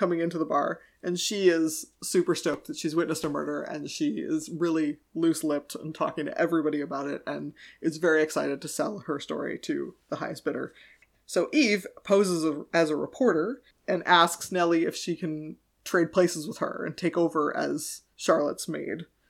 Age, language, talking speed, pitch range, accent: 30-49, English, 185 wpm, 160-195 Hz, American